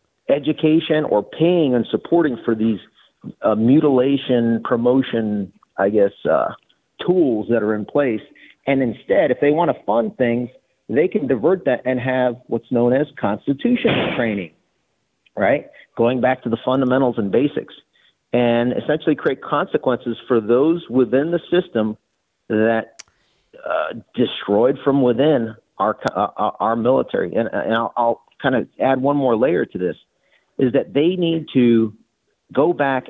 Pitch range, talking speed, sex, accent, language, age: 115-155 Hz, 145 wpm, male, American, English, 50-69